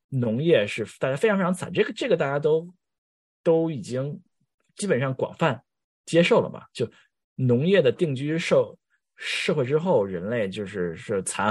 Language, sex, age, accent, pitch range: Chinese, male, 20-39, native, 100-165 Hz